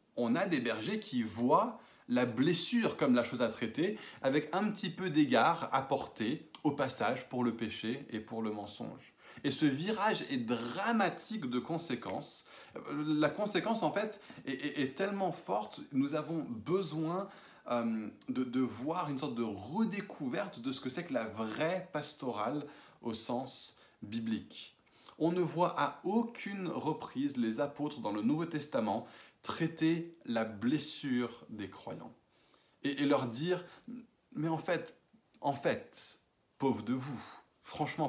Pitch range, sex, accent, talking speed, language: 125-190 Hz, male, French, 150 wpm, French